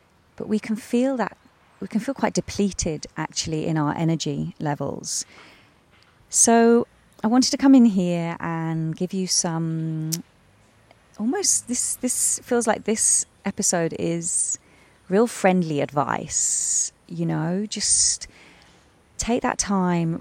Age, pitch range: 30-49, 150-205 Hz